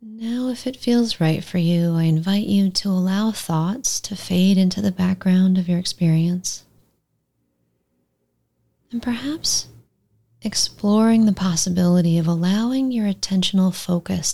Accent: American